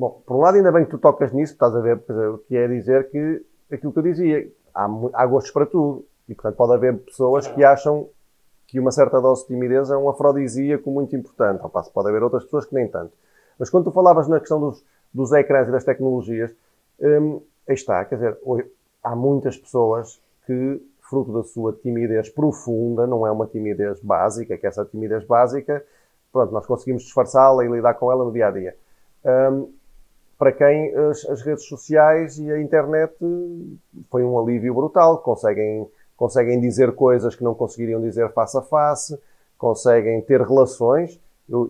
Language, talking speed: Portuguese, 185 wpm